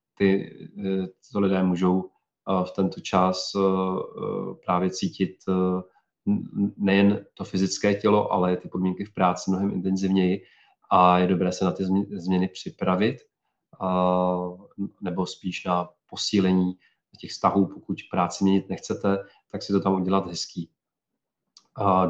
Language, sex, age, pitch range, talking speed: Czech, male, 40-59, 90-100 Hz, 135 wpm